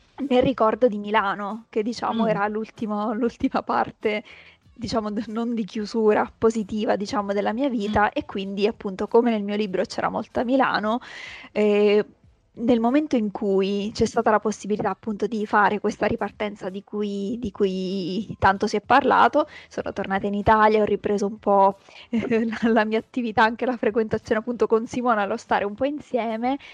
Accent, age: native, 20-39